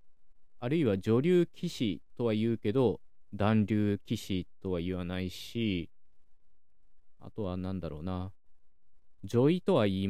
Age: 20-39